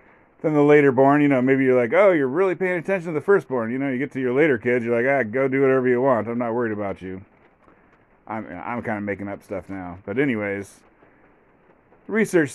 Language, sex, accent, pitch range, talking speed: English, male, American, 115-150 Hz, 235 wpm